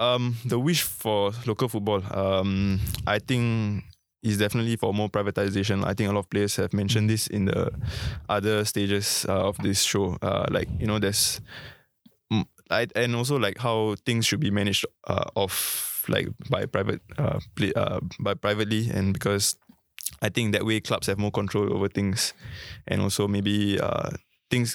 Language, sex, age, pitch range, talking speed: English, male, 20-39, 100-110 Hz, 175 wpm